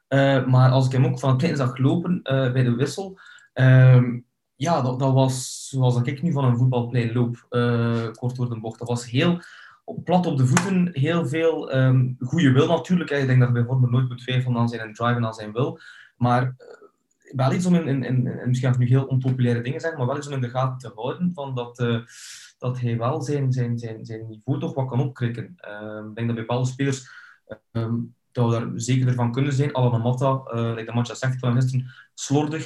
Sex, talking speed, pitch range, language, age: male, 225 wpm, 120-140 Hz, Dutch, 20-39